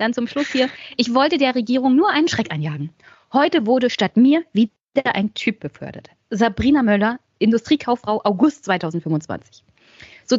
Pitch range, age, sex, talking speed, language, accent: 210-280 Hz, 20-39, female, 150 wpm, German, German